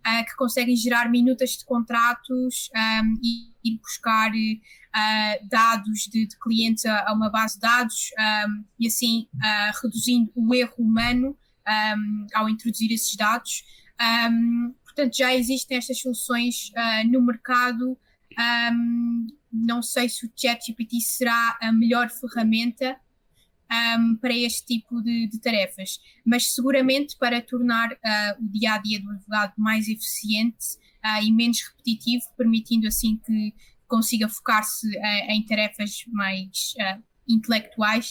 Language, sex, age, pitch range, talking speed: Portuguese, female, 20-39, 220-245 Hz, 115 wpm